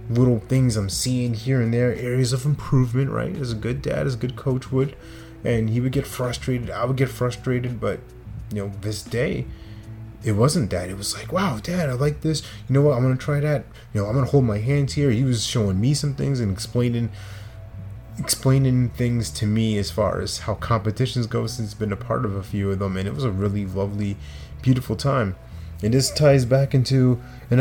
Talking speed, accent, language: 225 wpm, American, English